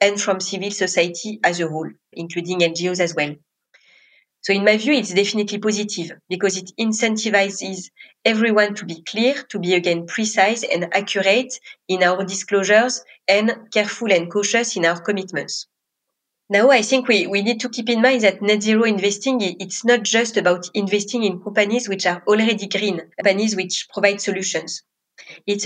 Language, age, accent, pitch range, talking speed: English, 30-49, French, 185-220 Hz, 165 wpm